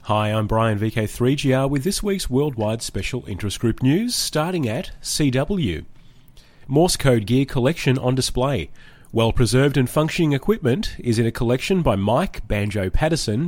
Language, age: English, 30-49